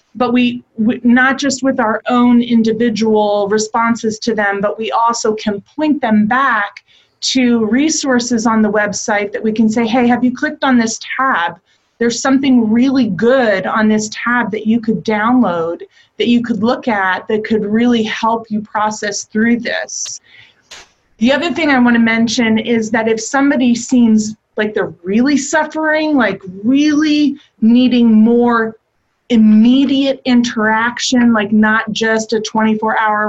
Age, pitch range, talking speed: 30-49, 210-245 Hz, 155 wpm